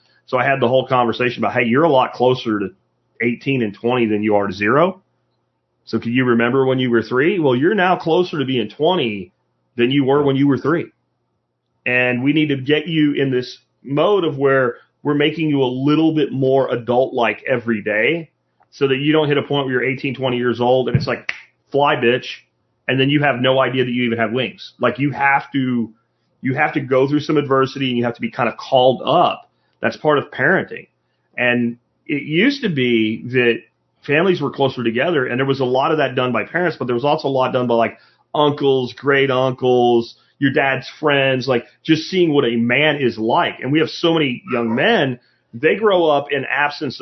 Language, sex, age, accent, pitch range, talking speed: English, male, 30-49, American, 120-145 Hz, 220 wpm